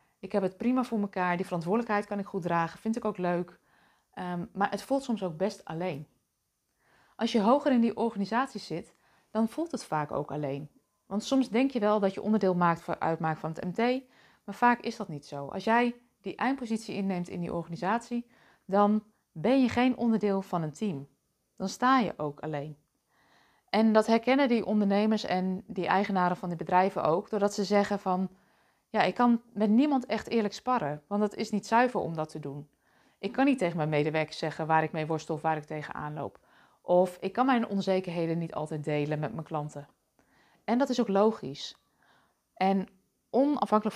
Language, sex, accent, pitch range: Dutch, female, Dutch, 170-220 Hz